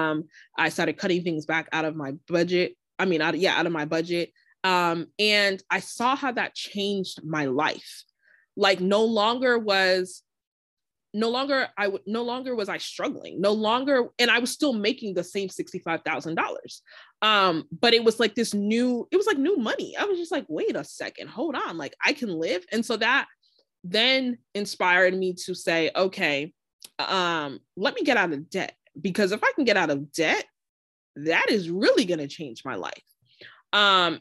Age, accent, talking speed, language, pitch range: 20-39, American, 190 wpm, English, 160-205 Hz